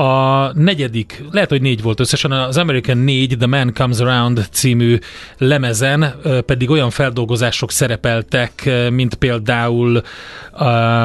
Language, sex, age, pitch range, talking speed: Hungarian, male, 30-49, 120-140 Hz, 125 wpm